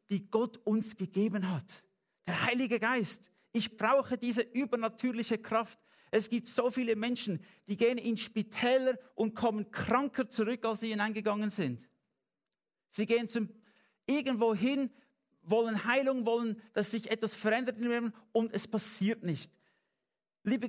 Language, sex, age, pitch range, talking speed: English, male, 50-69, 185-235 Hz, 135 wpm